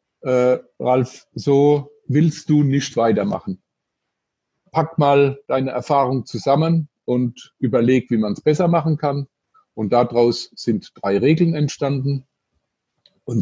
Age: 50-69